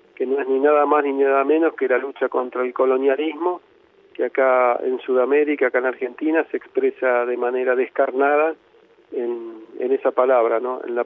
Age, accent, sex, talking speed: 40-59, Argentinian, male, 185 wpm